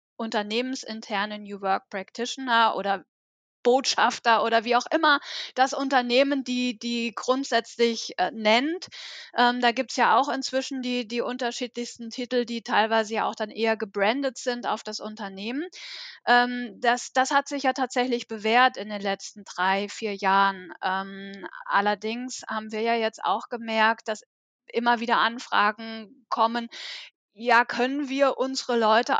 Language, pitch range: German, 210-245 Hz